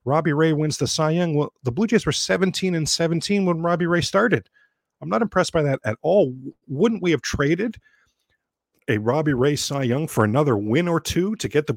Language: English